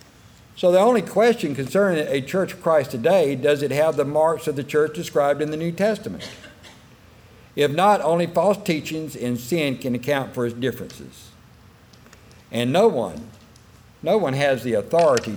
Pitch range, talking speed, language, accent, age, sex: 115-150 Hz, 170 wpm, English, American, 60-79, male